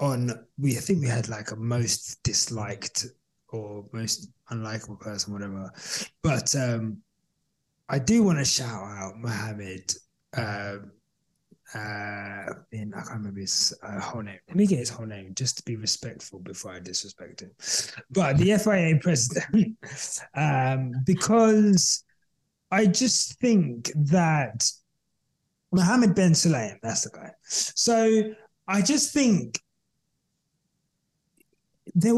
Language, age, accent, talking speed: English, 20-39, British, 125 wpm